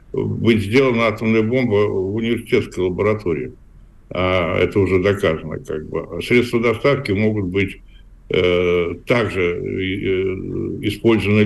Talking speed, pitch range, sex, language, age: 110 wpm, 95-115 Hz, male, Russian, 60-79